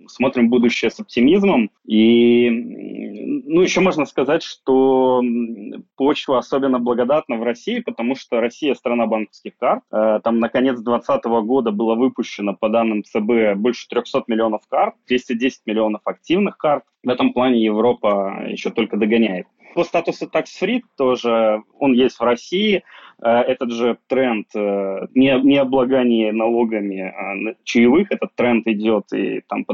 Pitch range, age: 110-130 Hz, 20-39